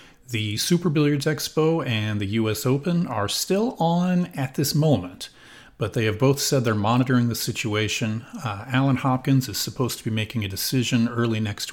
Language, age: English, 40-59